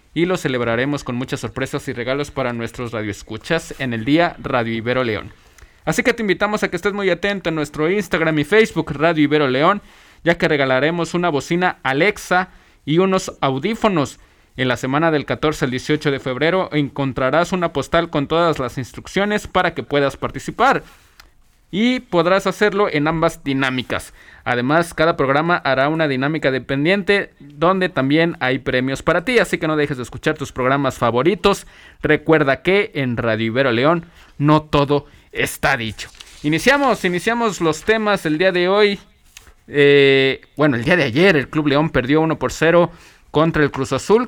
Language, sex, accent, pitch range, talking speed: Spanish, male, Mexican, 135-180 Hz, 170 wpm